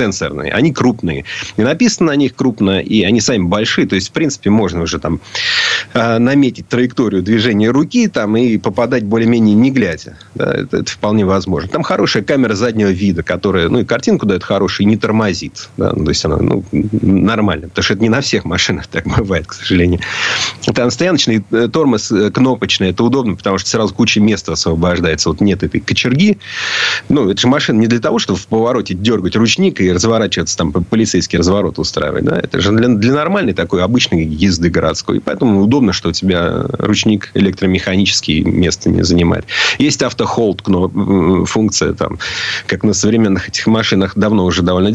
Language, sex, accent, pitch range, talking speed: Russian, male, native, 90-115 Hz, 180 wpm